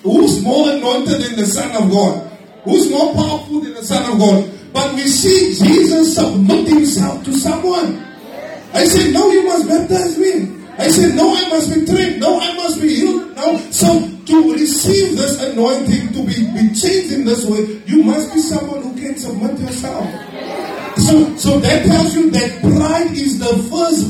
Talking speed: 180 wpm